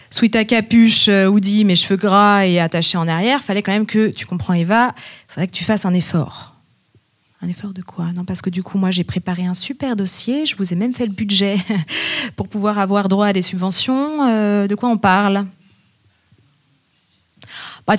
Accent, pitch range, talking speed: French, 180-220 Hz, 200 wpm